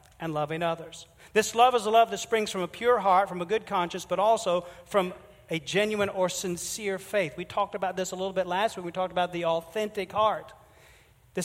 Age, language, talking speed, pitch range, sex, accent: 50-69, English, 220 wpm, 175-230 Hz, male, American